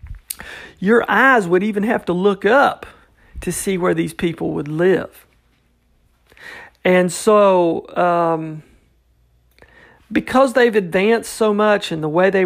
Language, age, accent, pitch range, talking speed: English, 40-59, American, 160-210 Hz, 130 wpm